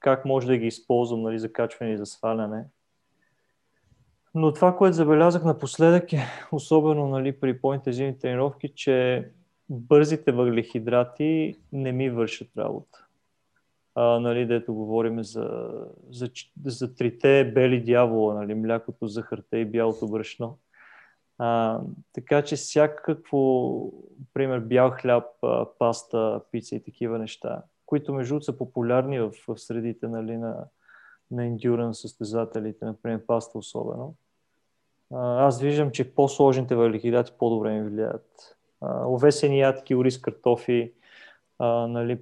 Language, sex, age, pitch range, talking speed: Bulgarian, male, 30-49, 115-140 Hz, 120 wpm